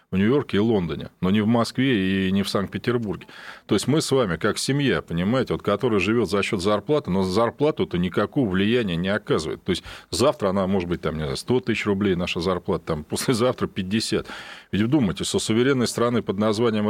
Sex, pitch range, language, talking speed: male, 105-135 Hz, Russian, 200 wpm